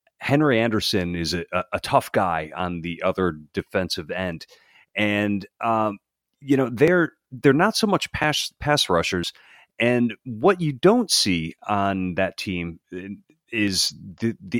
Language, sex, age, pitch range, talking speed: English, male, 30-49, 90-125 Hz, 140 wpm